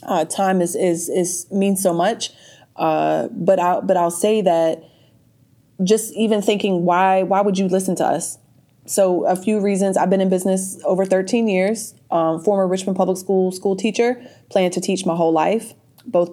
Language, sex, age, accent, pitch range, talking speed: English, female, 20-39, American, 165-195 Hz, 185 wpm